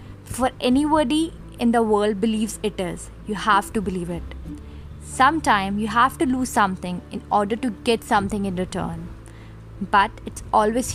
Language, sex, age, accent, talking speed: English, female, 20-39, Indian, 160 wpm